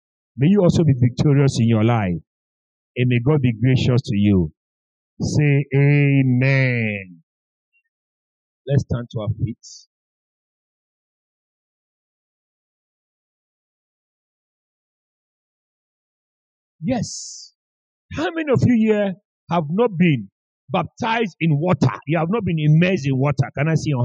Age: 50-69